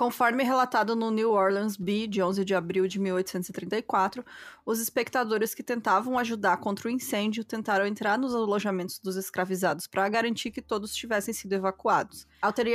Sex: female